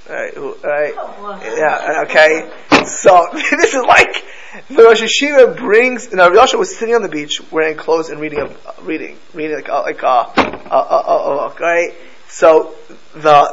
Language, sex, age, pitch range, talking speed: English, male, 20-39, 155-230 Hz, 165 wpm